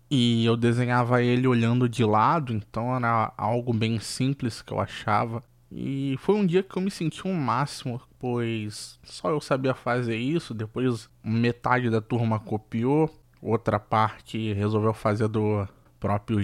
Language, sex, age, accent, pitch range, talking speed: Portuguese, male, 20-39, Brazilian, 110-135 Hz, 155 wpm